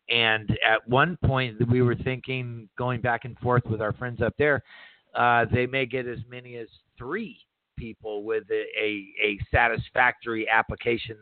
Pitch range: 110-130 Hz